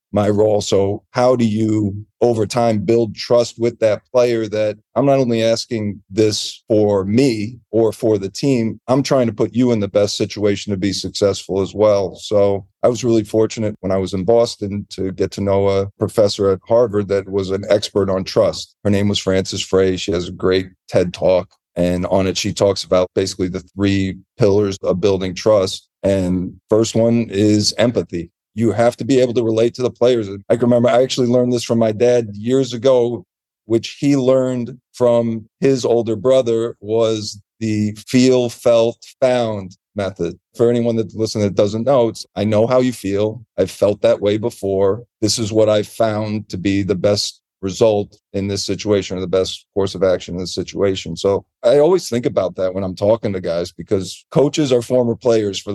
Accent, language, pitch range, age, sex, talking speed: American, English, 100-120 Hz, 40-59, male, 200 wpm